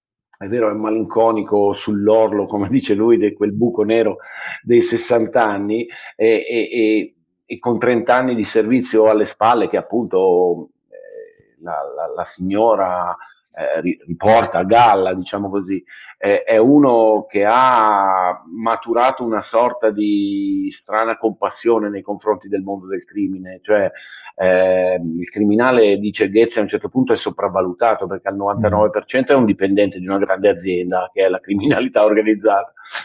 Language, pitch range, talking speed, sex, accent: Italian, 100-120 Hz, 150 wpm, male, native